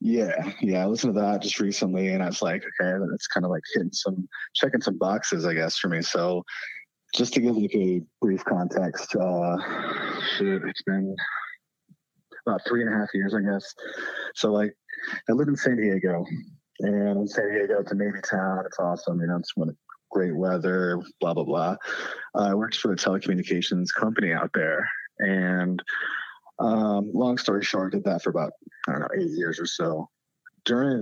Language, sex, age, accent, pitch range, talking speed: English, male, 30-49, American, 95-115 Hz, 190 wpm